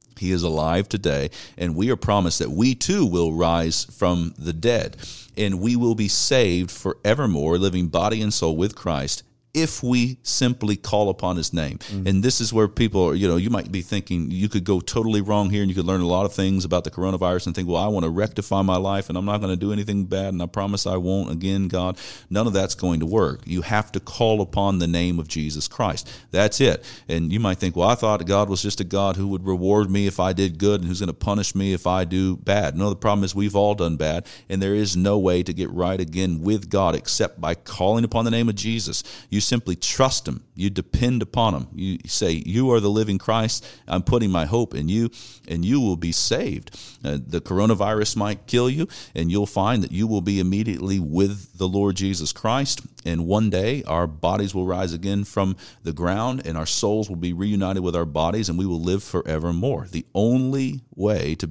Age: 40-59